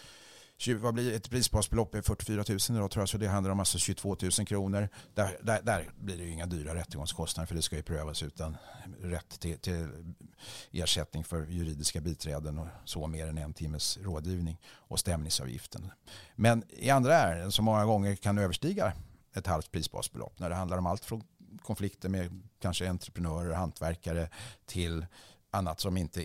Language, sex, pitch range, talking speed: English, male, 85-105 Hz, 175 wpm